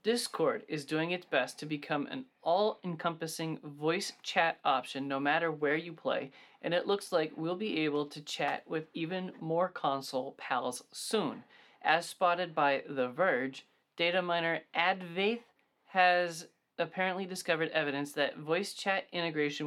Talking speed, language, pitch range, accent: 145 wpm, English, 145-180 Hz, American